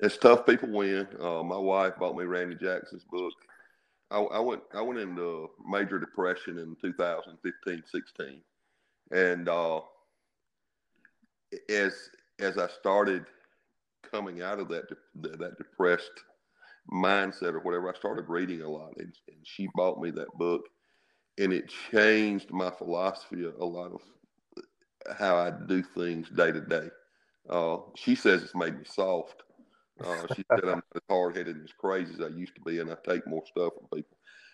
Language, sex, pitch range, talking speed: English, male, 85-100 Hz, 165 wpm